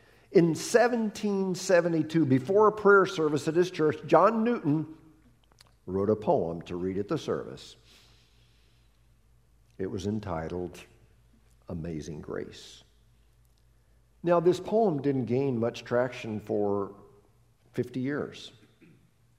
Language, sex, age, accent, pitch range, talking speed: English, male, 50-69, American, 115-165 Hz, 105 wpm